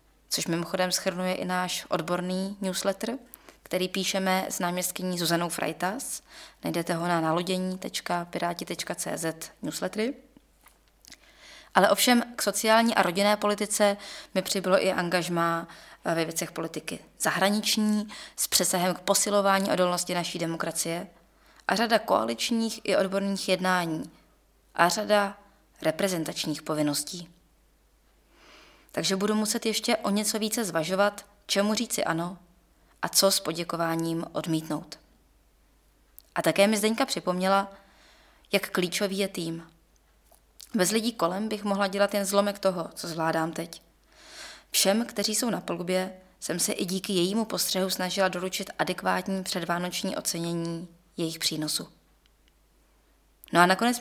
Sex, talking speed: female, 120 wpm